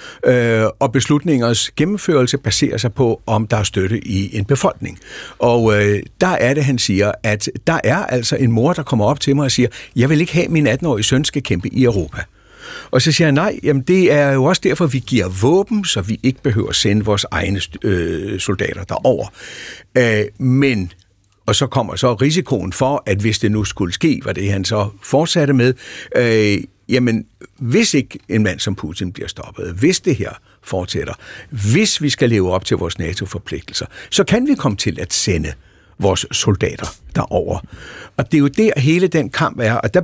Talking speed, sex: 195 wpm, male